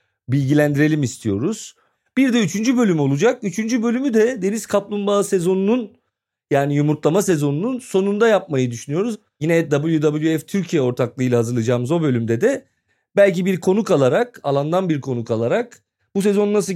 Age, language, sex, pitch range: 40-59, Turkish, male, 135-205 Hz